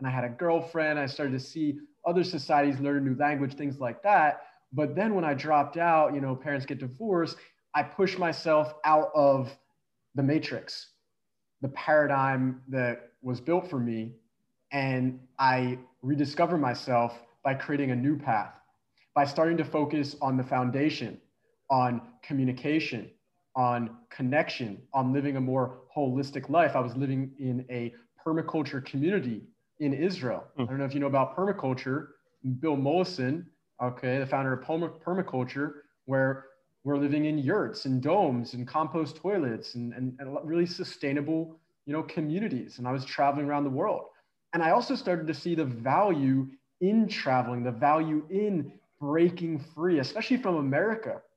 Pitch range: 130-160 Hz